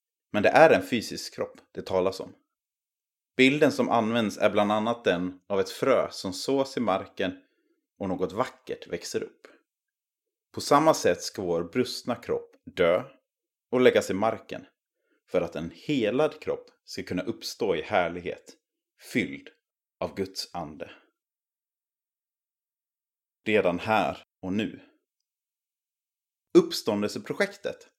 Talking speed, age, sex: 125 wpm, 30-49, male